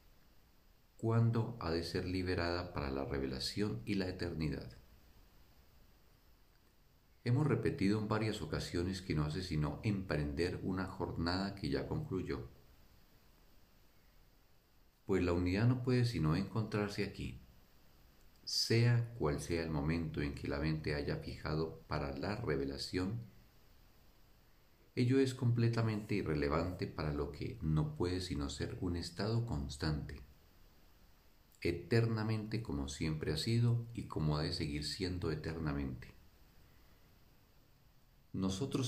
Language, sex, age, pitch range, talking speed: Spanish, male, 50-69, 75-105 Hz, 115 wpm